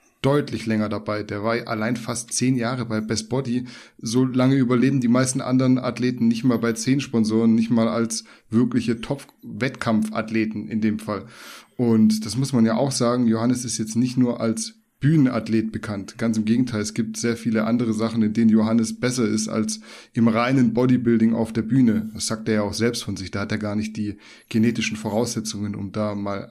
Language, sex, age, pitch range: German, male, 10-29, 110-125 Hz